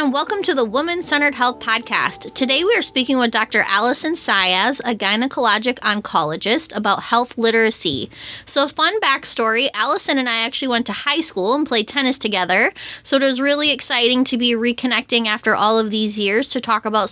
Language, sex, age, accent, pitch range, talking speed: English, female, 20-39, American, 215-275 Hz, 180 wpm